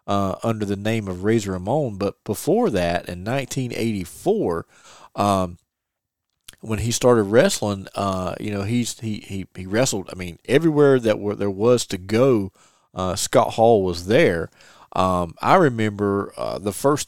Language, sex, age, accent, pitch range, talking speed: English, male, 40-59, American, 95-125 Hz, 160 wpm